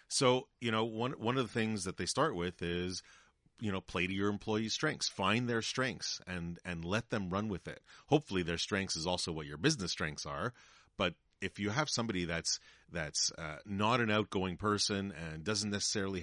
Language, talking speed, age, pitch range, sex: English, 205 wpm, 40-59, 85-105 Hz, male